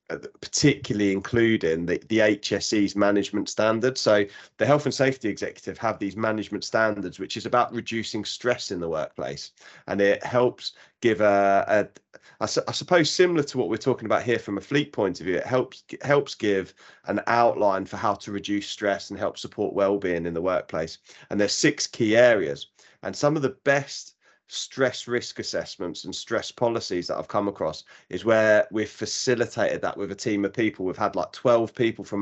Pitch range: 100-115 Hz